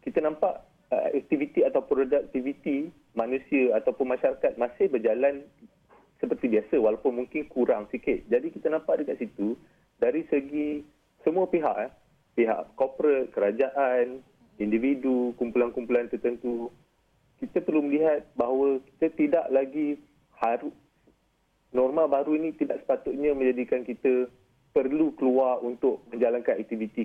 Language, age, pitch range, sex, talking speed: Malay, 40-59, 115-150 Hz, male, 120 wpm